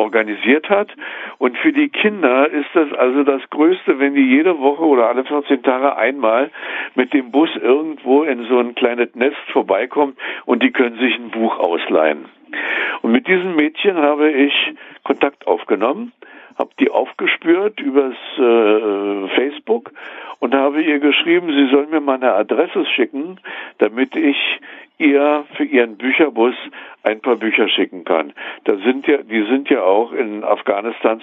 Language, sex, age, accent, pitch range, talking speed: German, male, 60-79, German, 120-155 Hz, 160 wpm